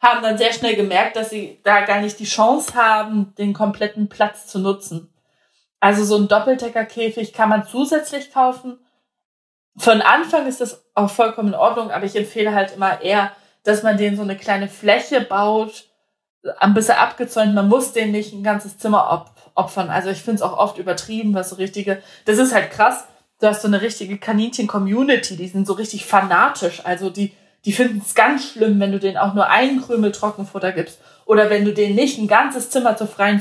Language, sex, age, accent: German, female, 20-39, German